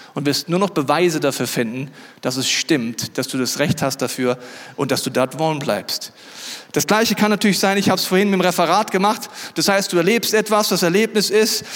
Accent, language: German, German